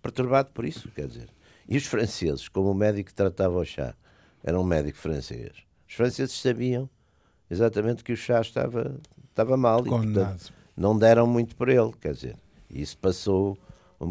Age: 60-79